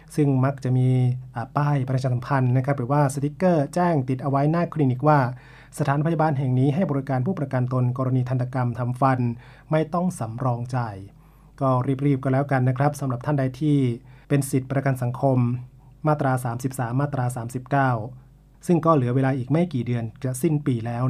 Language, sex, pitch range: Thai, male, 125-145 Hz